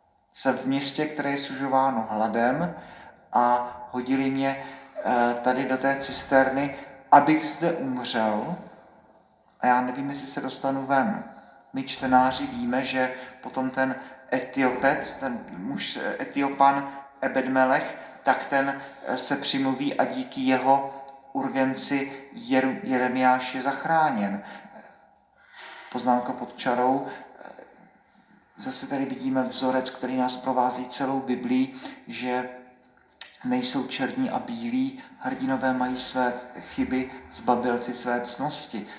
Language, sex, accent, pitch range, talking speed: Czech, male, native, 125-155 Hz, 110 wpm